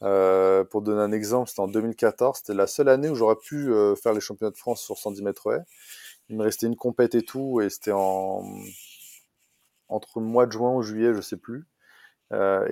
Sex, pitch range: male, 100-115 Hz